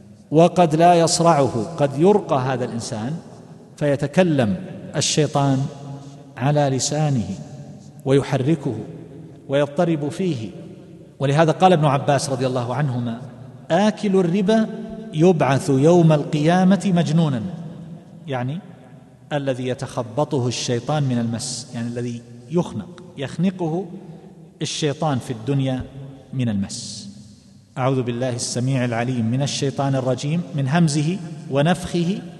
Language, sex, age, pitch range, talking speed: Arabic, male, 50-69, 130-170 Hz, 95 wpm